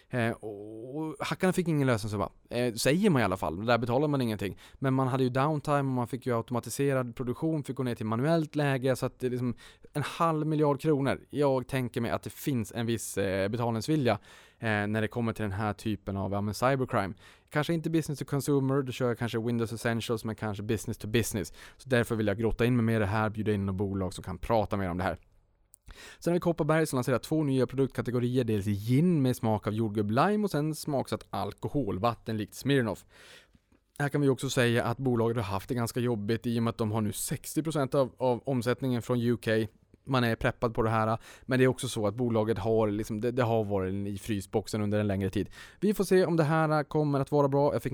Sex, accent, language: male, Norwegian, Swedish